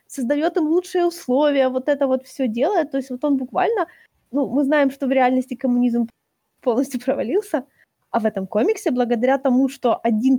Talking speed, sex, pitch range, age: 180 wpm, female, 235-285 Hz, 20-39